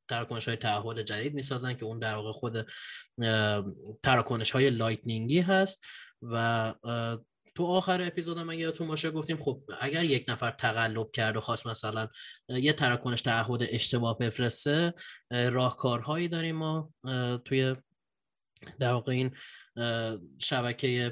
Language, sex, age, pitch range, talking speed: Persian, male, 20-39, 115-140 Hz, 120 wpm